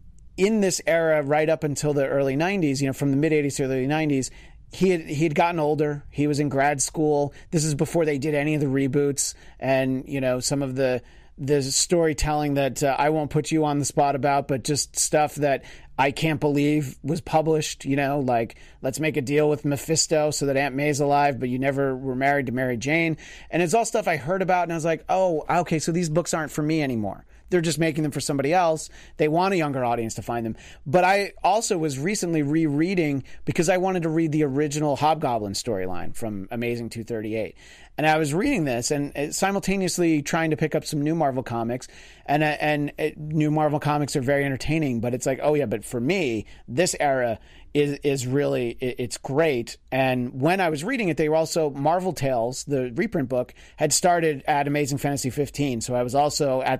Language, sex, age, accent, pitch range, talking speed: English, male, 30-49, American, 135-160 Hz, 215 wpm